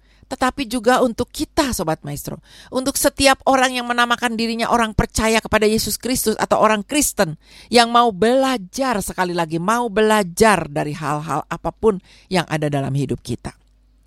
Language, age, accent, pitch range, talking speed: Indonesian, 50-69, native, 145-220 Hz, 150 wpm